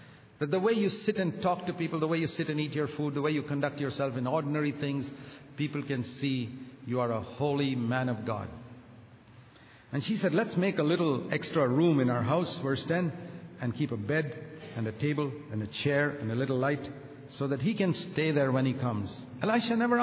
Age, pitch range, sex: 50-69, 120-150 Hz, male